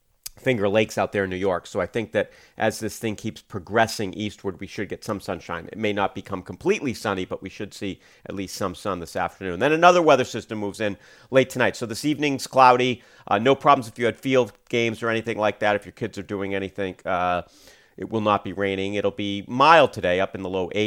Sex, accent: male, American